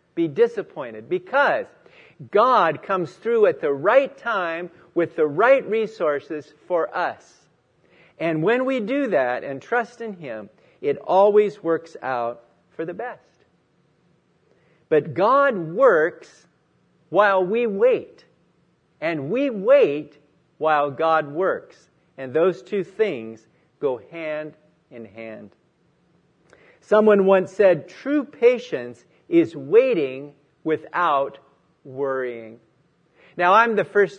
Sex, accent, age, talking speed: male, American, 50-69, 115 wpm